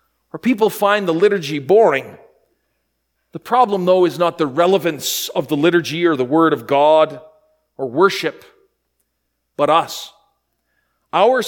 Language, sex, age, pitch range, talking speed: English, male, 40-59, 175-230 Hz, 135 wpm